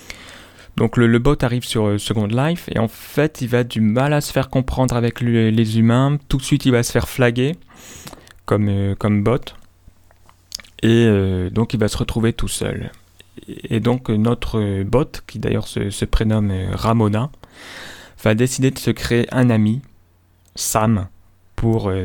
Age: 20-39